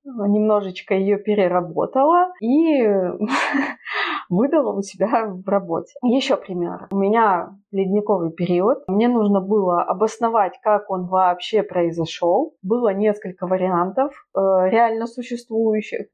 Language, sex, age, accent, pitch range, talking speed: Russian, female, 20-39, native, 185-245 Hz, 110 wpm